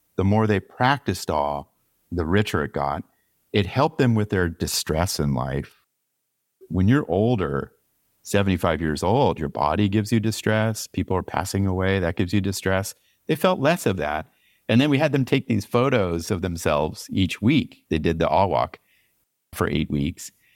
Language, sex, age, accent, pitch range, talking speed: English, male, 50-69, American, 85-115 Hz, 175 wpm